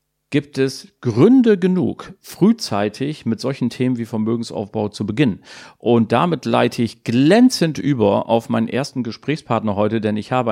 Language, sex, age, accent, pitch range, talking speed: German, male, 40-59, German, 110-135 Hz, 150 wpm